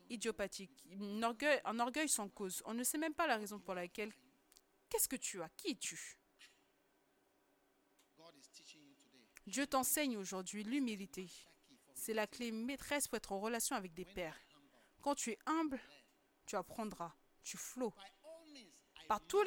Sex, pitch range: female, 205-320 Hz